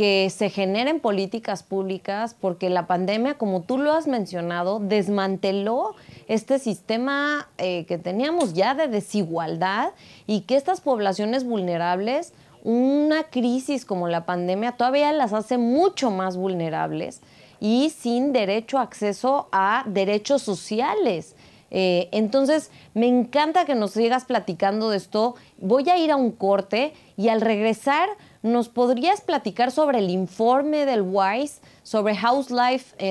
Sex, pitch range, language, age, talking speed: female, 185-245 Hz, Spanish, 30-49, 140 wpm